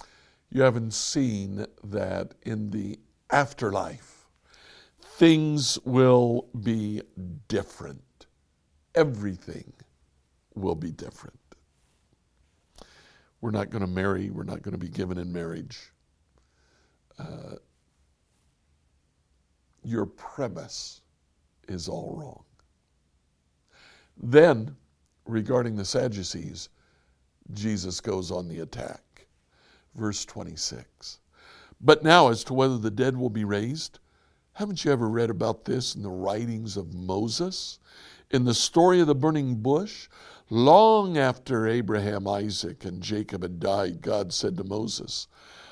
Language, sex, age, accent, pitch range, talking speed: English, male, 60-79, American, 75-125 Hz, 110 wpm